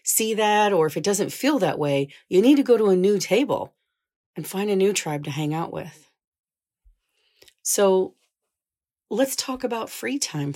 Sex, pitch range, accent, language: female, 155-200 Hz, American, English